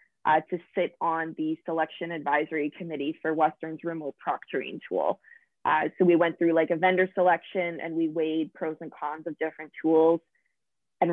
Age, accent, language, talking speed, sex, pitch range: 20-39, American, English, 175 wpm, female, 155-175 Hz